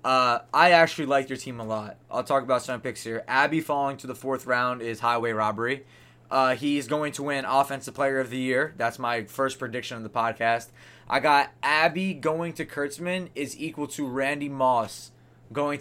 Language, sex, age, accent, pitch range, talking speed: English, male, 20-39, American, 120-140 Hz, 200 wpm